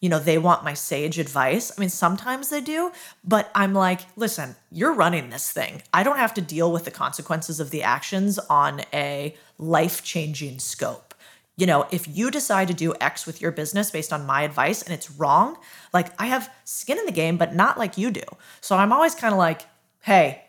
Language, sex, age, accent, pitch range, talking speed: English, female, 20-39, American, 160-210 Hz, 215 wpm